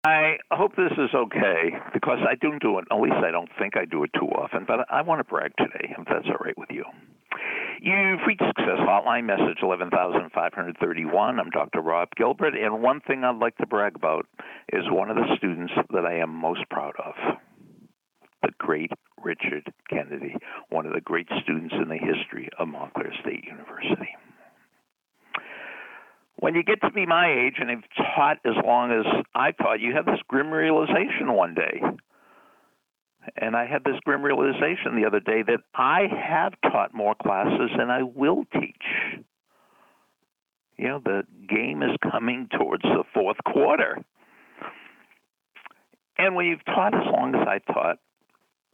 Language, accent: English, American